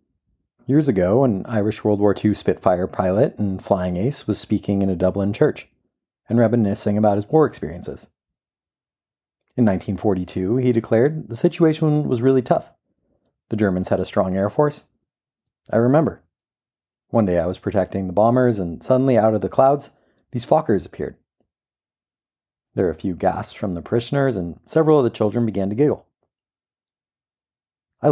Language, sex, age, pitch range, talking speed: English, male, 30-49, 95-125 Hz, 160 wpm